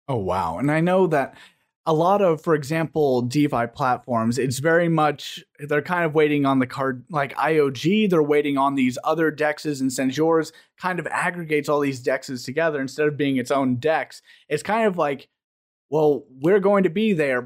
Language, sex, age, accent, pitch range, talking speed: English, male, 30-49, American, 140-170 Hz, 195 wpm